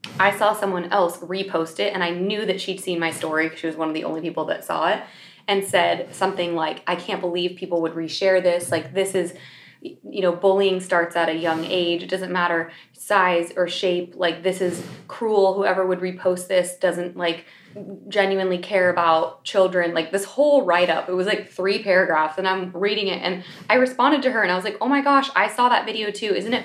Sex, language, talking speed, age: female, English, 225 wpm, 20-39